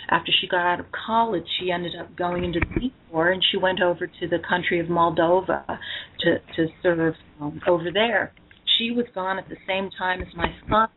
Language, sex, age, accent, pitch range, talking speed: English, female, 40-59, American, 170-195 Hz, 215 wpm